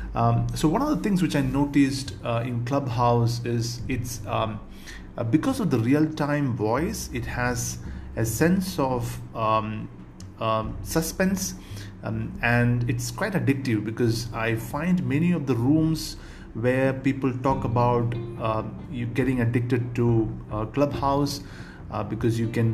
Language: English